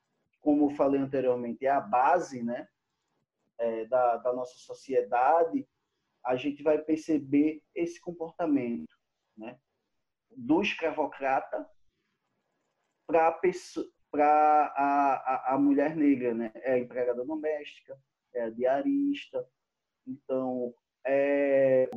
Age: 20-39